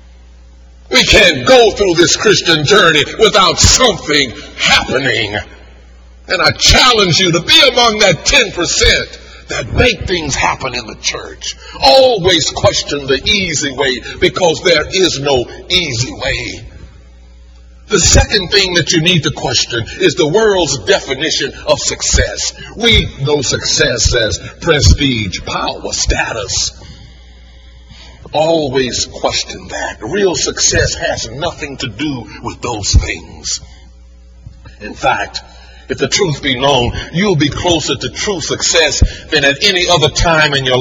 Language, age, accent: English, 60-79, American